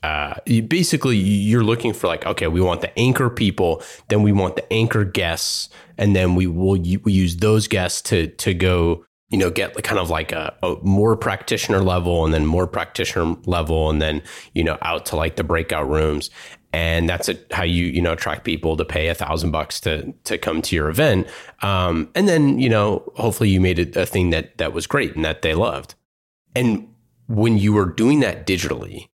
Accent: American